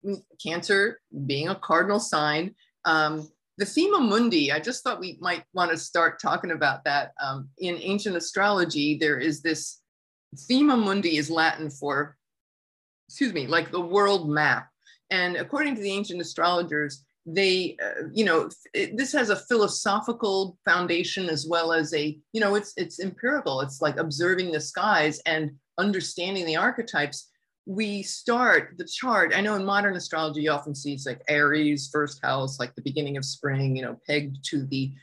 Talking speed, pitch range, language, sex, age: 170 wpm, 150-200 Hz, English, female, 50-69